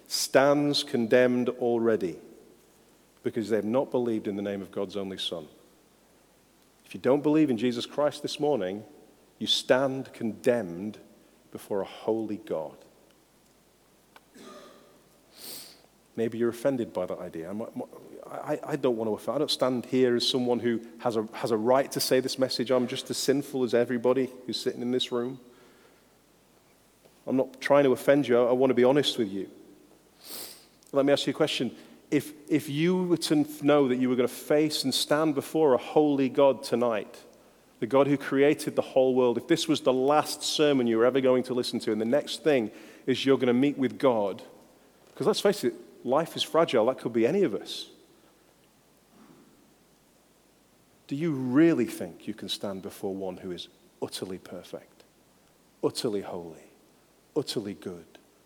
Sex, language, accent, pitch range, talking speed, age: male, English, British, 120-145 Hz, 170 wpm, 40-59